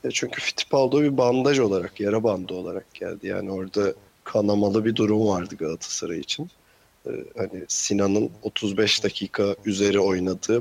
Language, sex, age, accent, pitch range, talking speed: Turkish, male, 40-59, native, 100-120 Hz, 135 wpm